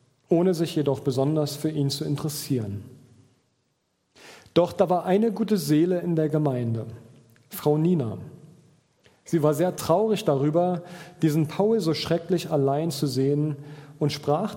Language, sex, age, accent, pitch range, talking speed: German, male, 40-59, German, 140-180 Hz, 135 wpm